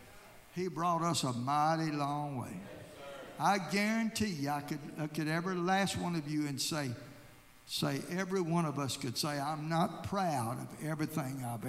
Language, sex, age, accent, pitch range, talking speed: English, male, 60-79, American, 140-185 Hz, 175 wpm